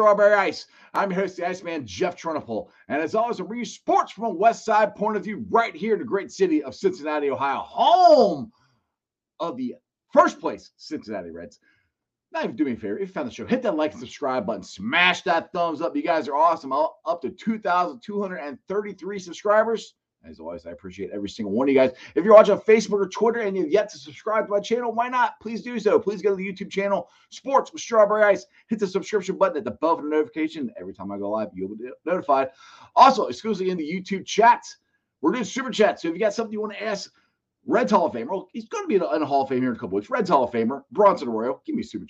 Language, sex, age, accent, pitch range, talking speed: English, male, 30-49, American, 155-225 Hz, 245 wpm